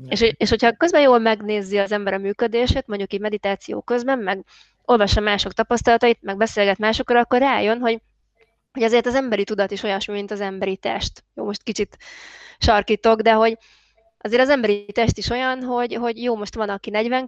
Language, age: Hungarian, 20-39